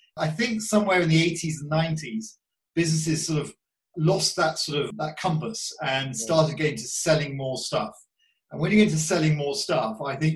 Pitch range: 140-185 Hz